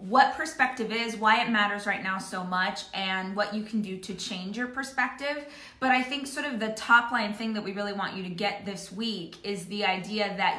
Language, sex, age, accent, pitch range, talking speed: English, female, 20-39, American, 200-255 Hz, 230 wpm